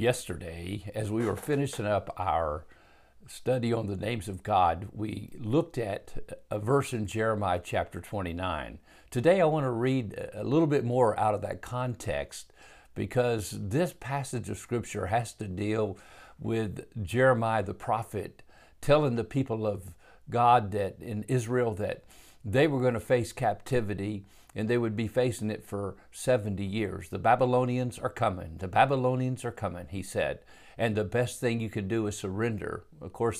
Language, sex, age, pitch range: English, male, 50-69, 105-125 Hz